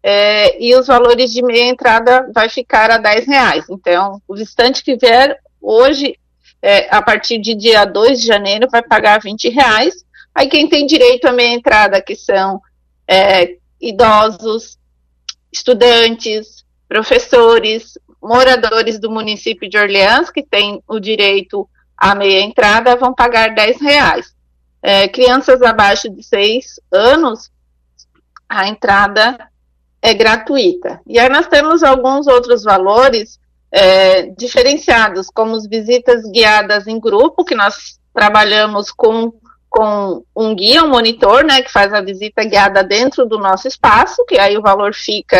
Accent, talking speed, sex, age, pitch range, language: Brazilian, 140 wpm, female, 40-59, 200-255 Hz, Portuguese